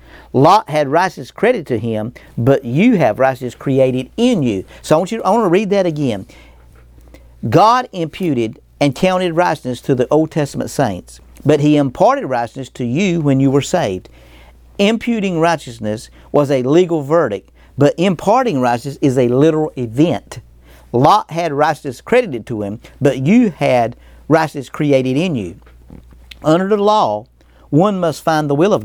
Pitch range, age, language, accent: 120-170 Hz, 50-69, English, American